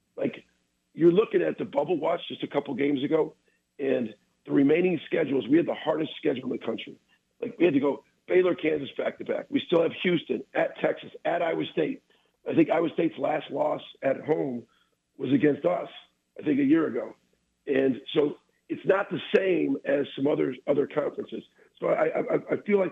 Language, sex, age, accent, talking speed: English, male, 50-69, American, 200 wpm